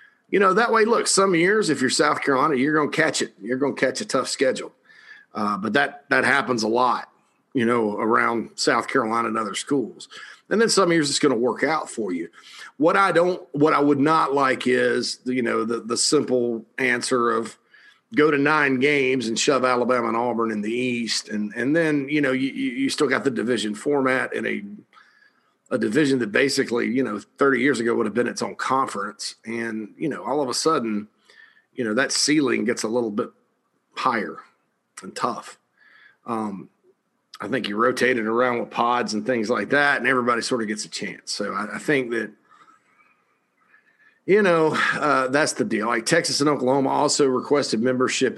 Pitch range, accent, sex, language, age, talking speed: 115-160 Hz, American, male, English, 40-59, 205 wpm